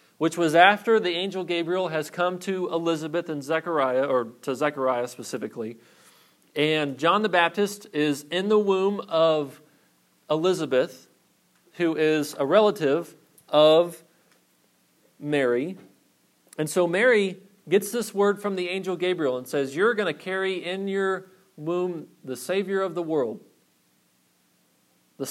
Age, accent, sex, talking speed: 40-59, American, male, 135 wpm